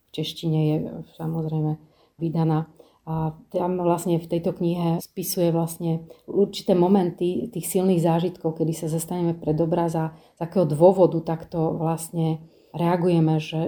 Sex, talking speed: female, 125 wpm